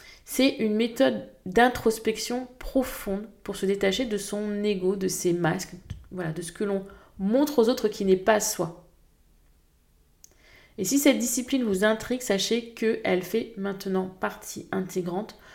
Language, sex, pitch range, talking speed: French, female, 185-240 Hz, 145 wpm